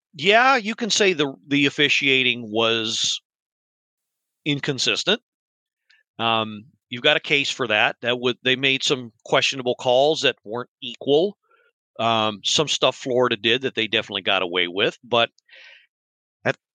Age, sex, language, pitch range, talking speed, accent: 40-59, male, English, 120-165 Hz, 140 wpm, American